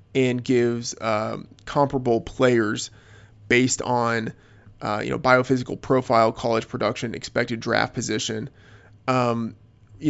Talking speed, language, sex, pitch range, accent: 115 wpm, English, male, 115-130 Hz, American